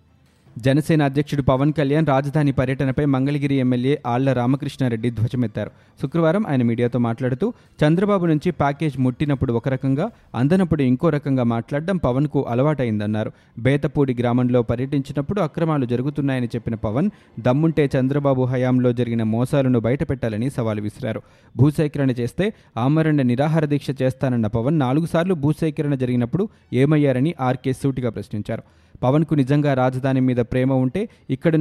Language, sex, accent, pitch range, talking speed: Telugu, male, native, 125-150 Hz, 120 wpm